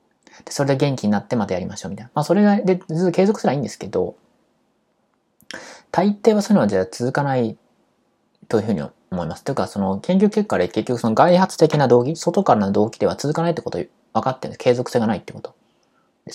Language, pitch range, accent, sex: Japanese, 115-185 Hz, native, male